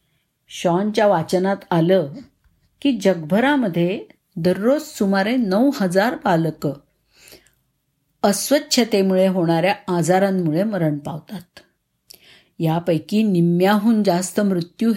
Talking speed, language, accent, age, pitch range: 75 wpm, Marathi, native, 50-69, 175-220 Hz